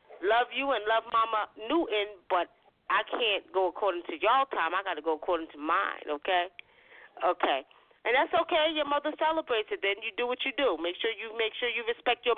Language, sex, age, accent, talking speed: English, female, 30-49, American, 215 wpm